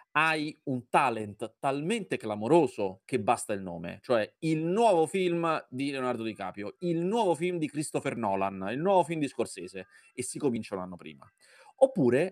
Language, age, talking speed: Italian, 30-49, 170 wpm